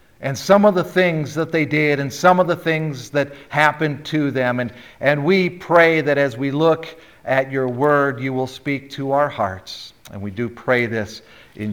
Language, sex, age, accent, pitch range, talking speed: English, male, 50-69, American, 125-170 Hz, 205 wpm